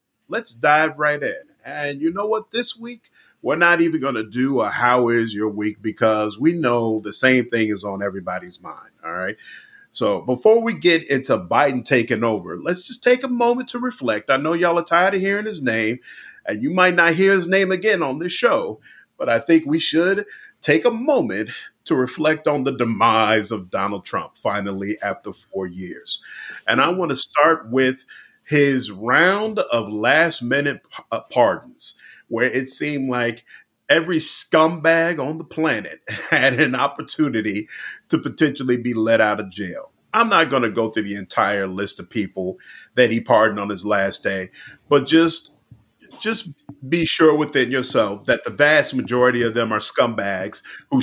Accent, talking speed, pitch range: American, 180 wpm, 110-170 Hz